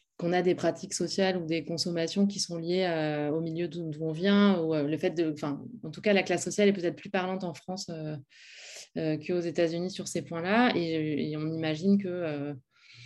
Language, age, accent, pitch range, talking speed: French, 20-39, French, 160-195 Hz, 225 wpm